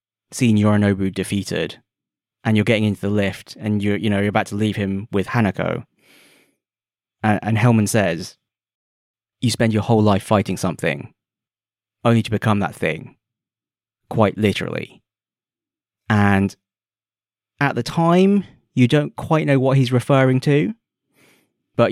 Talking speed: 140 wpm